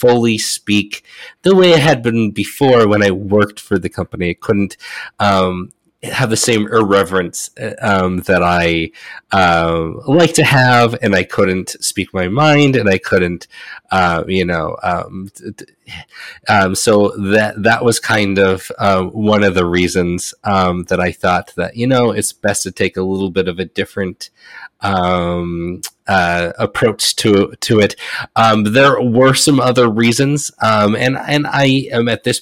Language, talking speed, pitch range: English, 170 wpm, 95-120 Hz